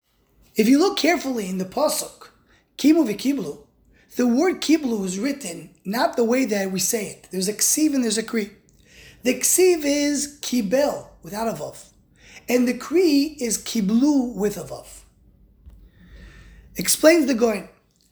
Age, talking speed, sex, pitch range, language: 20-39, 145 wpm, male, 195-270 Hz, English